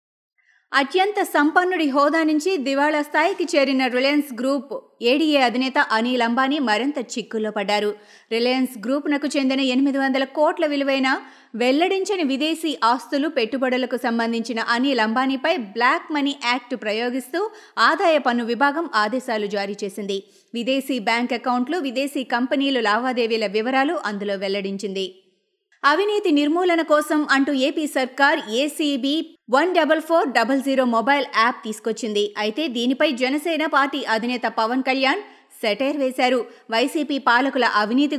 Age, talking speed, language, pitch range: 20-39, 120 wpm, Telugu, 235-295 Hz